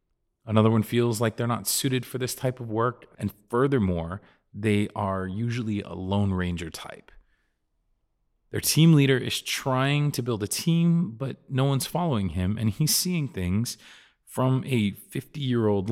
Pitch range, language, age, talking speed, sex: 90-125 Hz, English, 30-49, 160 wpm, male